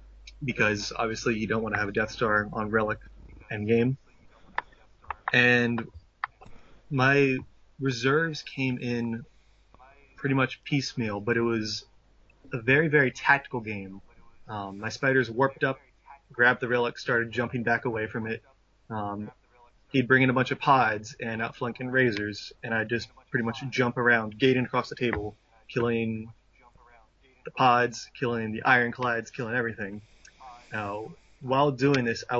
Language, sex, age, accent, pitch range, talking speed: English, male, 20-39, American, 110-130 Hz, 145 wpm